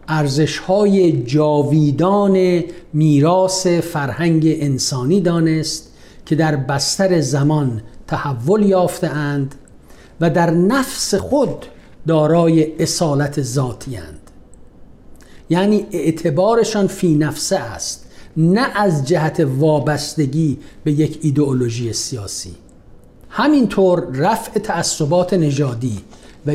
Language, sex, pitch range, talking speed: Persian, male, 135-170 Hz, 90 wpm